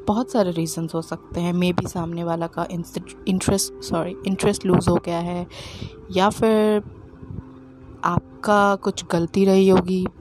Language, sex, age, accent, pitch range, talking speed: Hindi, female, 20-39, native, 170-190 Hz, 145 wpm